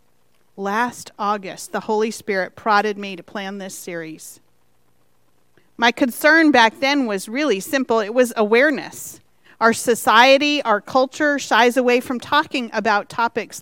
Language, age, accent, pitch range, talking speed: English, 40-59, American, 175-245 Hz, 135 wpm